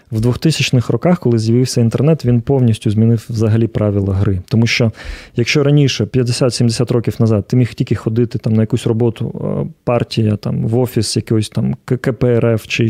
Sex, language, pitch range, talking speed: male, Ukrainian, 115-135 Hz, 165 wpm